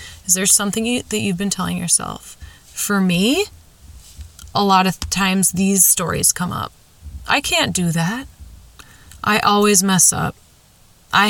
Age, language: 20-39, English